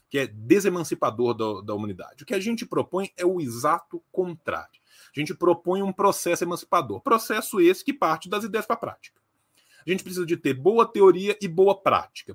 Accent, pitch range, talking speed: Brazilian, 160-205 Hz, 190 wpm